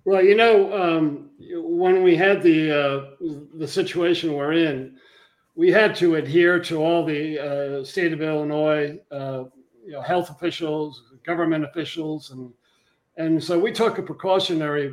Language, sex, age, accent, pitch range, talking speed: English, male, 50-69, American, 150-185 Hz, 155 wpm